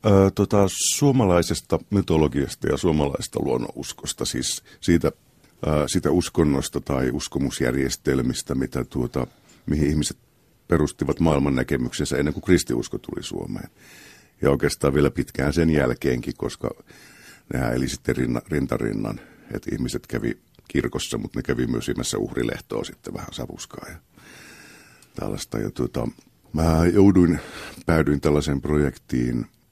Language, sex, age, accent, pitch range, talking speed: Finnish, male, 50-69, native, 65-90 Hz, 110 wpm